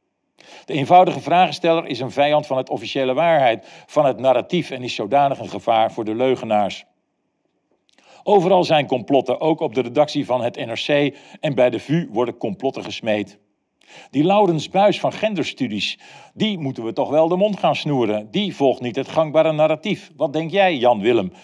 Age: 50-69